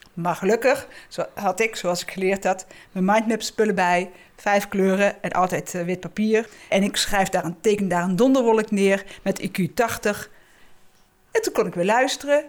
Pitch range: 180-225 Hz